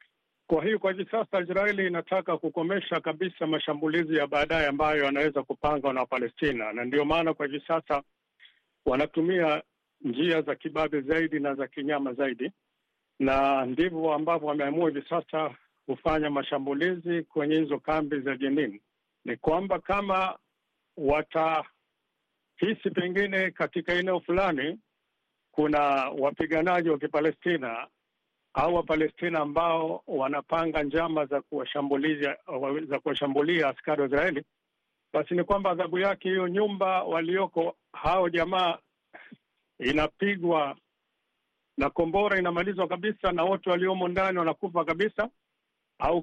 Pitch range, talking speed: 150-185 Hz, 120 wpm